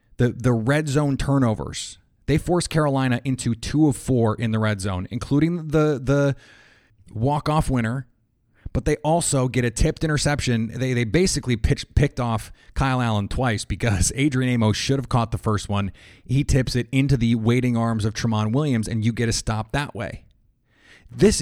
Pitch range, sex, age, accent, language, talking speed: 110-135 Hz, male, 30-49, American, English, 180 wpm